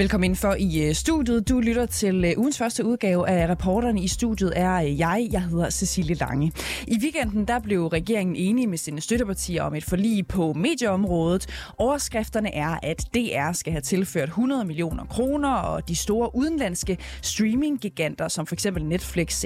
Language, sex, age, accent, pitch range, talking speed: Danish, female, 20-39, native, 170-230 Hz, 165 wpm